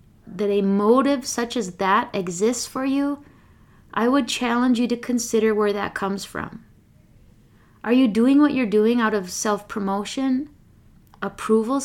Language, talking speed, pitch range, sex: English, 145 wpm, 210-255 Hz, female